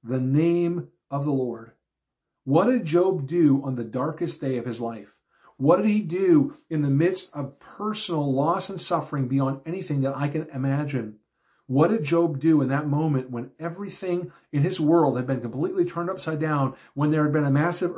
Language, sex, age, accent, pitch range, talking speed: English, male, 50-69, American, 140-175 Hz, 195 wpm